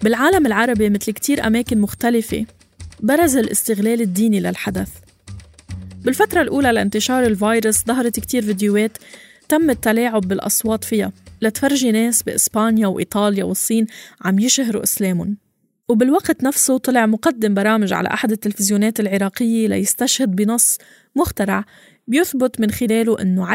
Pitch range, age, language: 205-245 Hz, 20-39, Arabic